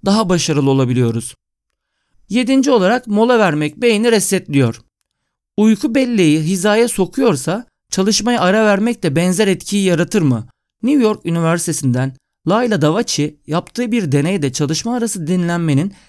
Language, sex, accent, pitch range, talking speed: Turkish, male, native, 150-215 Hz, 120 wpm